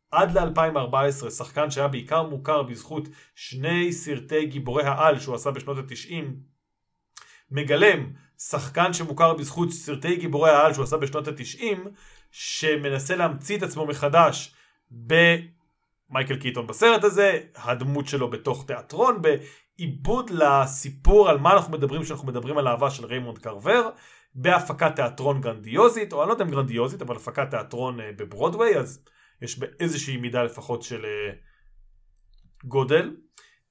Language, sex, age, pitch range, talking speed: Hebrew, male, 40-59, 135-175 Hz, 125 wpm